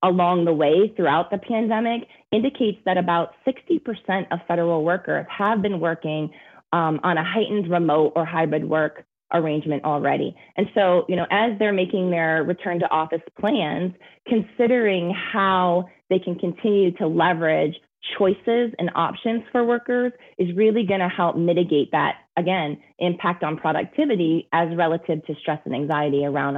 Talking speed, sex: 155 wpm, female